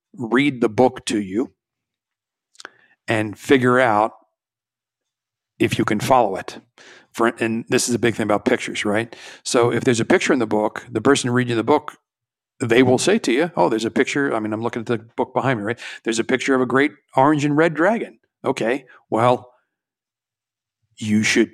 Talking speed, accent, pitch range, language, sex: 190 wpm, American, 110-130 Hz, English, male